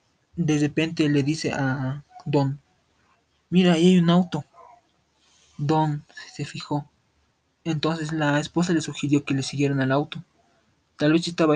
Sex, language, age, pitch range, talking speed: male, Spanish, 20-39, 140-165 Hz, 140 wpm